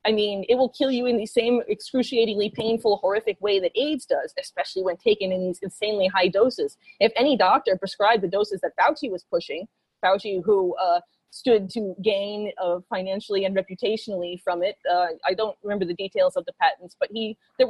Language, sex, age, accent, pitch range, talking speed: English, female, 30-49, American, 190-255 Hz, 195 wpm